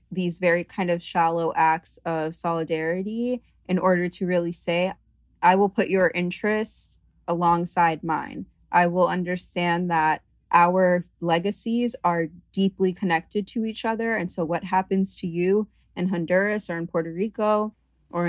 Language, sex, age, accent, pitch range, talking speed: English, female, 20-39, American, 165-190 Hz, 150 wpm